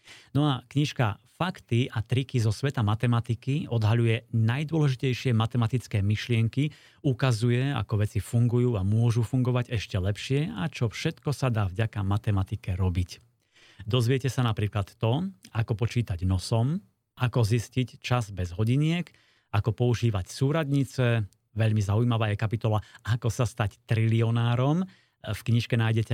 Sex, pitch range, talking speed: male, 110-130 Hz, 130 wpm